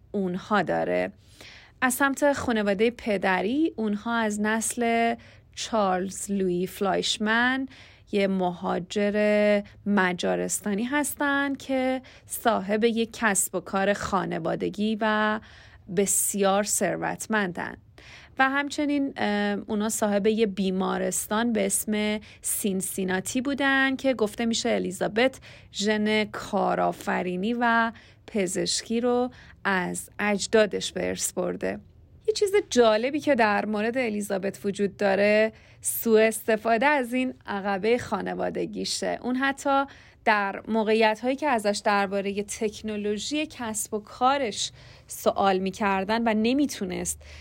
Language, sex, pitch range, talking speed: Persian, female, 195-235 Hz, 100 wpm